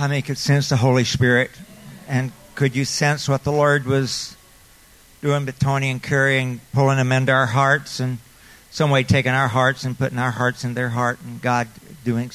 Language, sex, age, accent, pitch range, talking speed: English, male, 50-69, American, 125-145 Hz, 205 wpm